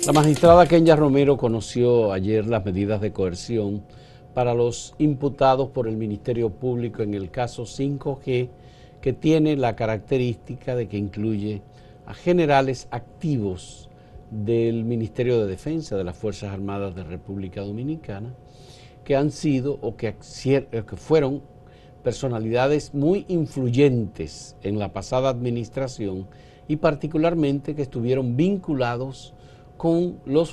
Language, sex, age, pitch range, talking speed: Spanish, male, 50-69, 115-150 Hz, 120 wpm